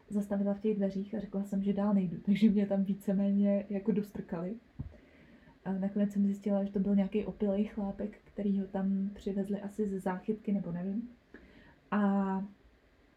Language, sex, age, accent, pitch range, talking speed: Czech, female, 20-39, native, 195-210 Hz, 165 wpm